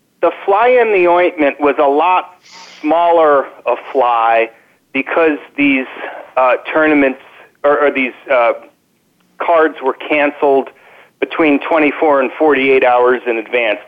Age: 40-59